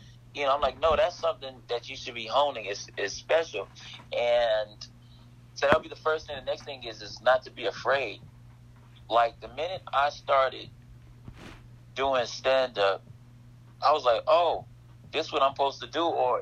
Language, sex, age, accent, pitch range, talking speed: English, male, 30-49, American, 120-140 Hz, 185 wpm